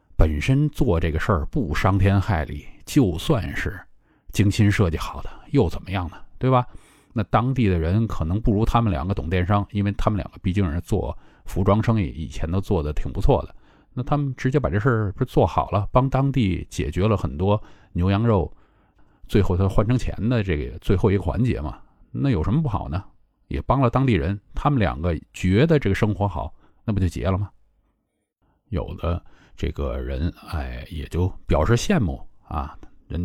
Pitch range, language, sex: 80-110 Hz, Chinese, male